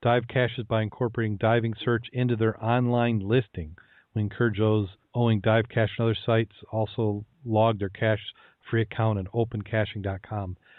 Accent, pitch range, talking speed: American, 110-130 Hz, 150 wpm